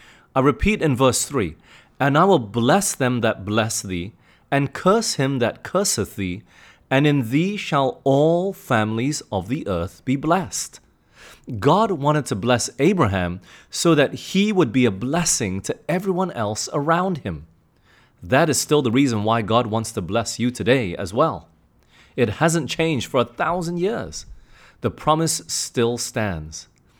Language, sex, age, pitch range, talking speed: English, male, 30-49, 110-150 Hz, 160 wpm